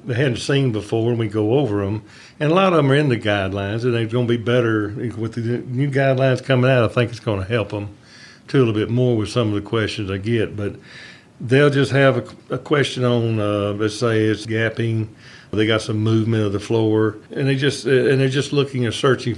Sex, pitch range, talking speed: male, 105-125 Hz, 240 wpm